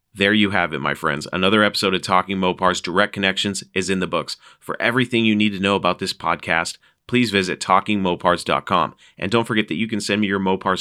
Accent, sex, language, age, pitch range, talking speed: American, male, English, 40-59, 90-105 Hz, 215 wpm